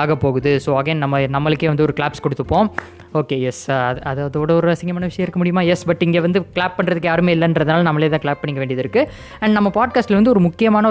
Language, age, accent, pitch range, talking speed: Tamil, 20-39, native, 145-175 Hz, 210 wpm